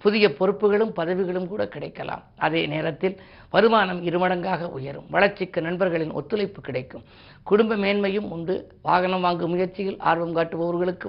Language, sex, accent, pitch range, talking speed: Tamil, female, native, 160-190 Hz, 120 wpm